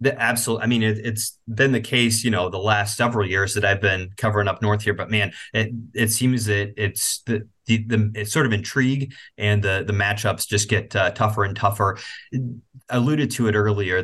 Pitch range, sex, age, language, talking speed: 105-120 Hz, male, 30-49, English, 215 wpm